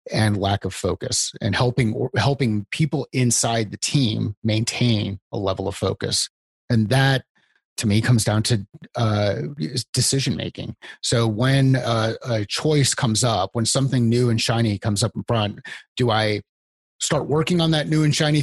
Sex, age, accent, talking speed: male, 30-49, American, 165 wpm